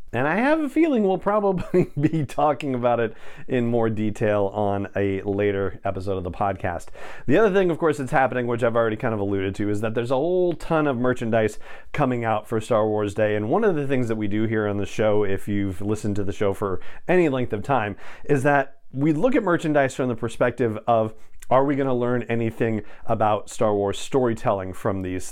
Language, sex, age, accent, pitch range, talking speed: English, male, 40-59, American, 105-135 Hz, 225 wpm